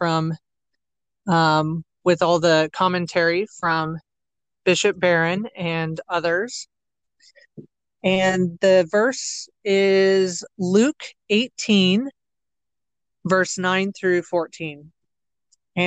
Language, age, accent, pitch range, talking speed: English, 30-49, American, 165-200 Hz, 70 wpm